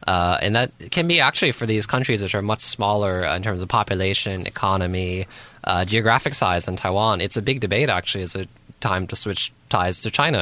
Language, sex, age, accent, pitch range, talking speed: English, male, 20-39, American, 90-110 Hz, 205 wpm